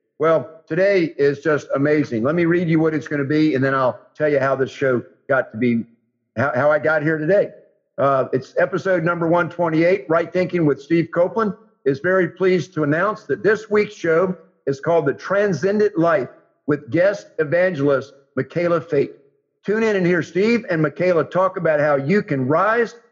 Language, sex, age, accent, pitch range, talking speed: English, male, 50-69, American, 130-185 Hz, 190 wpm